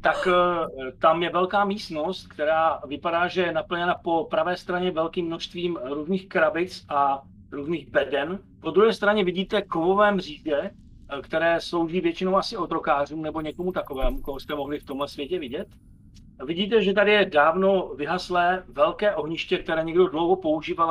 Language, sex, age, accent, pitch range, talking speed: Czech, male, 40-59, native, 135-180 Hz, 150 wpm